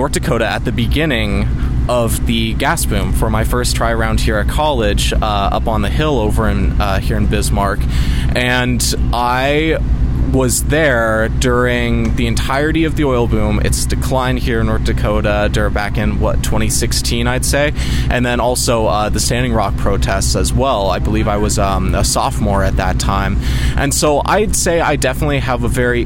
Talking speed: 185 wpm